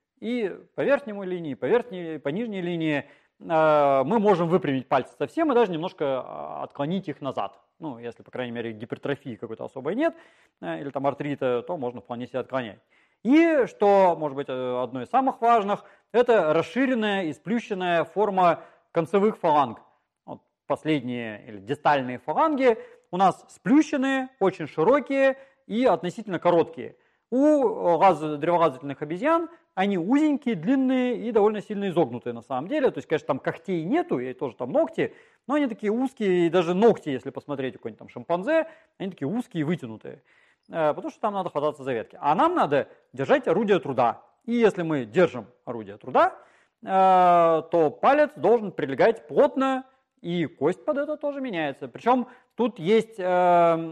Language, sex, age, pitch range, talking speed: Russian, male, 30-49, 150-245 Hz, 155 wpm